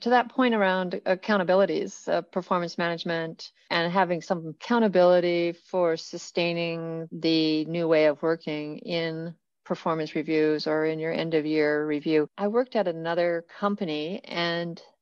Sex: female